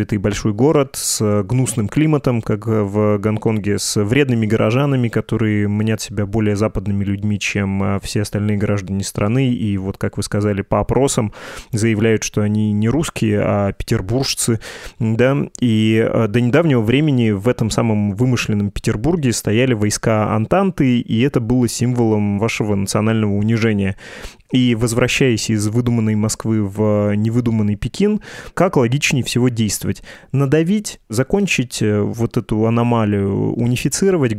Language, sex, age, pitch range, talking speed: Russian, male, 20-39, 105-125 Hz, 130 wpm